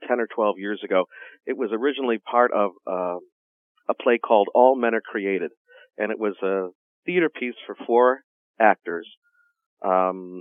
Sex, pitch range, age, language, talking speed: male, 100-125 Hz, 40-59, English, 160 wpm